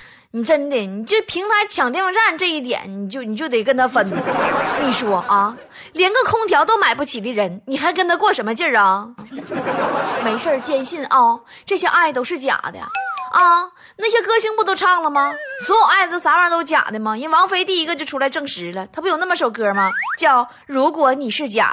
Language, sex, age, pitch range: Chinese, female, 20-39, 230-360 Hz